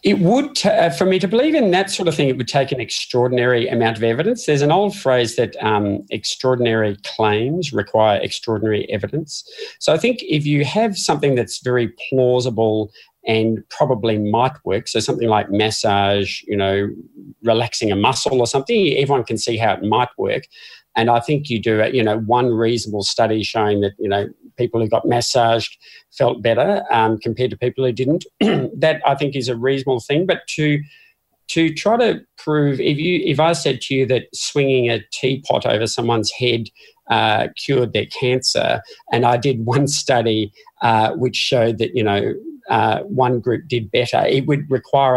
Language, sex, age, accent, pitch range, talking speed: English, male, 40-59, Australian, 110-145 Hz, 185 wpm